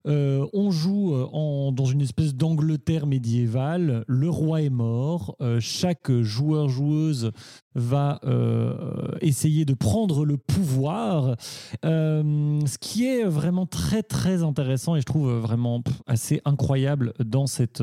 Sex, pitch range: male, 130-175 Hz